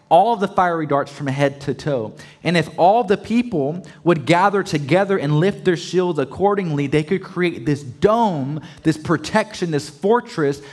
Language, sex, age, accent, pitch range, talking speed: English, male, 20-39, American, 145-195 Hz, 175 wpm